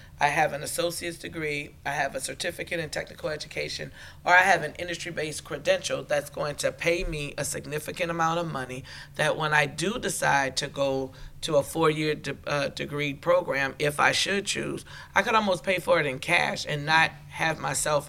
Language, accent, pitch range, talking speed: English, American, 145-180 Hz, 185 wpm